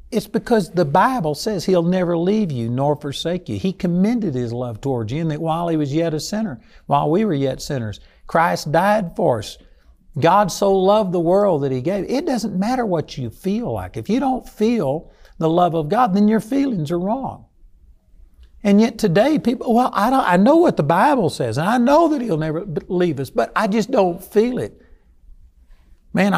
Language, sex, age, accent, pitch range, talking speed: English, male, 60-79, American, 125-205 Hz, 205 wpm